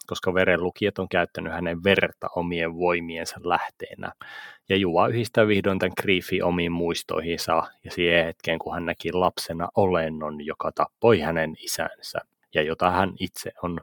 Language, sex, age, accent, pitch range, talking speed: Finnish, male, 30-49, native, 85-95 Hz, 150 wpm